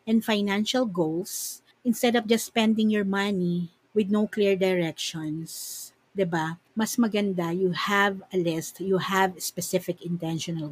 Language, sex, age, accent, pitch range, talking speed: Filipino, female, 50-69, native, 175-230 Hz, 135 wpm